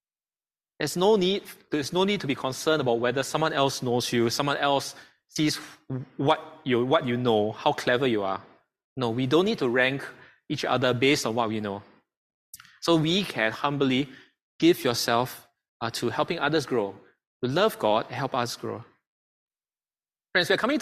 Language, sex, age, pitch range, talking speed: English, male, 20-39, 125-165 Hz, 175 wpm